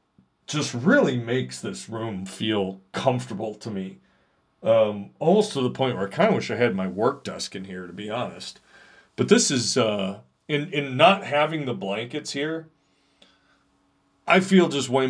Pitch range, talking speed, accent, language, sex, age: 110-150 Hz, 175 wpm, American, English, male, 40-59